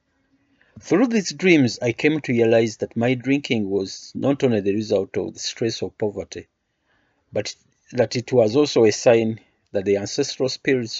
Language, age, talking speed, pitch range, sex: English, 50-69, 170 wpm, 105-135 Hz, male